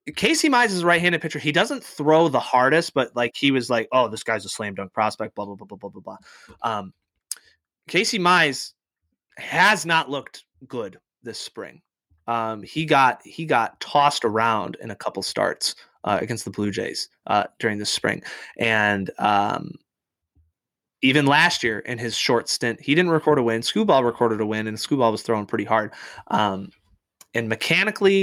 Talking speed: 185 wpm